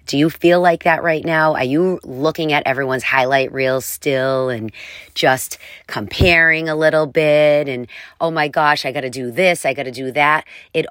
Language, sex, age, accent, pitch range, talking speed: English, female, 40-59, American, 125-160 Hz, 200 wpm